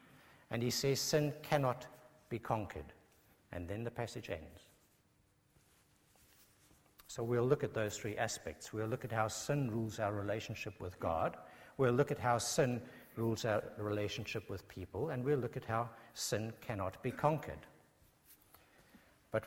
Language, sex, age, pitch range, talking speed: English, male, 60-79, 105-145 Hz, 150 wpm